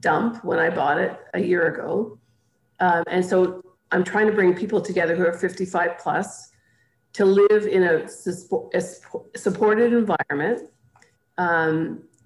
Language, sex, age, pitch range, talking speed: English, female, 50-69, 160-195 Hz, 140 wpm